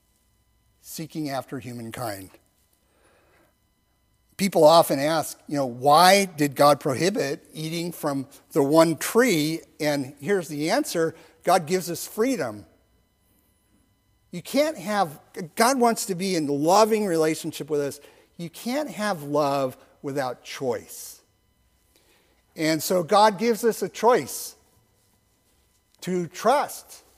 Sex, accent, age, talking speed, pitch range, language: male, American, 50-69, 115 wpm, 145-205 Hz, English